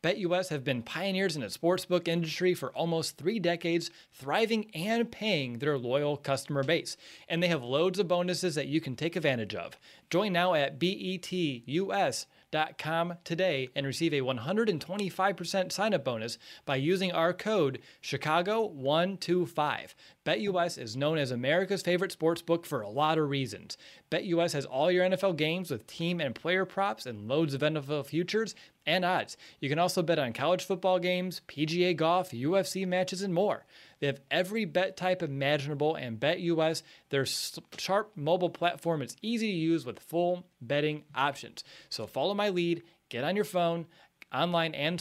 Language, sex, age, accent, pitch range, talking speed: English, male, 30-49, American, 145-185 Hz, 160 wpm